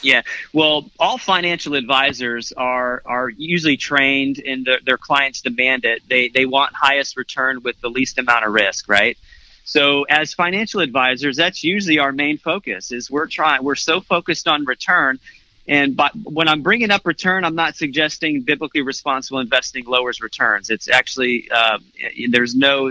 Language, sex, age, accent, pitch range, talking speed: English, male, 30-49, American, 130-165 Hz, 170 wpm